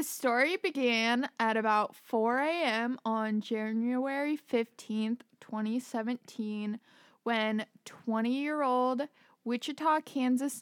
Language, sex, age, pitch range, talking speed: English, female, 20-39, 220-260 Hz, 90 wpm